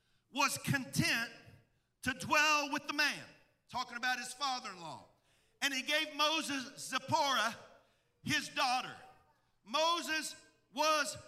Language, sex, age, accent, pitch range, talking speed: English, male, 50-69, American, 260-320 Hz, 105 wpm